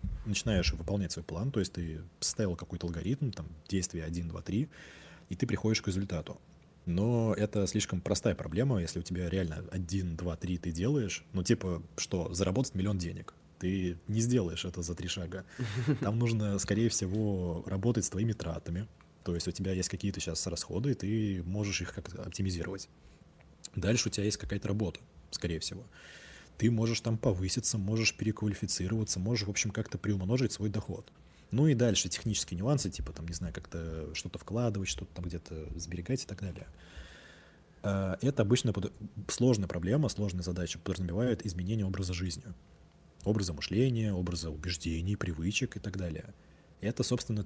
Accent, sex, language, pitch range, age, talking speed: native, male, Russian, 85-110 Hz, 20-39, 165 wpm